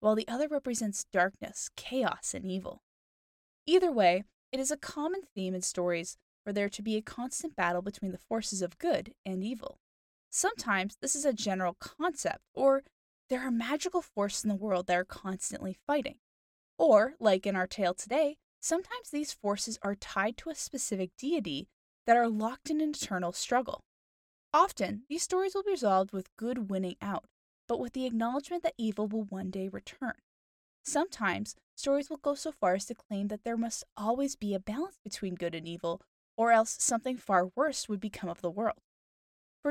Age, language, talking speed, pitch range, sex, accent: 10-29, English, 185 wpm, 190-275 Hz, female, American